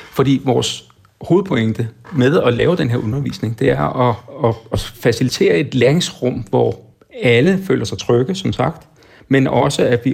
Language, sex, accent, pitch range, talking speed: Danish, male, native, 115-145 Hz, 165 wpm